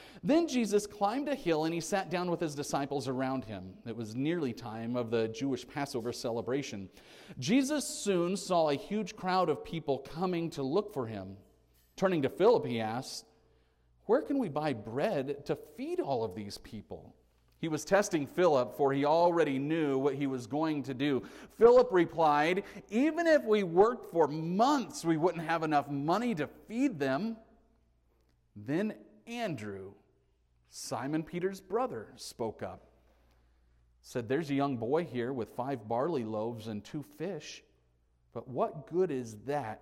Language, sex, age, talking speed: English, male, 40-59, 160 wpm